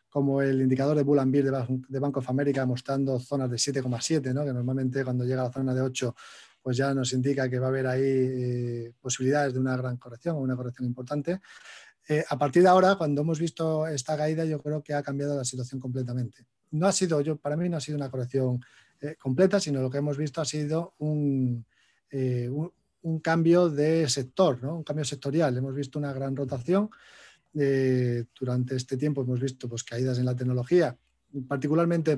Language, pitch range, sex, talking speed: Spanish, 125-150 Hz, male, 205 wpm